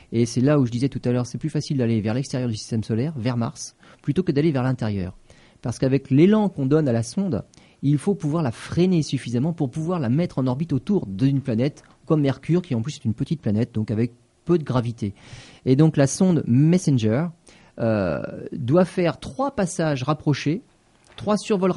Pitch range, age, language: 120-155 Hz, 30-49, French